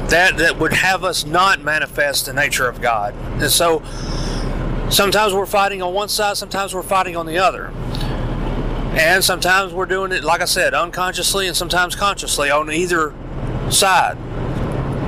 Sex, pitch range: male, 140-185 Hz